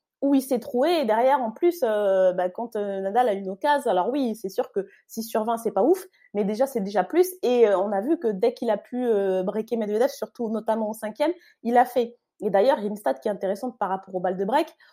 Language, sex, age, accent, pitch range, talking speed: French, female, 20-39, French, 215-275 Hz, 275 wpm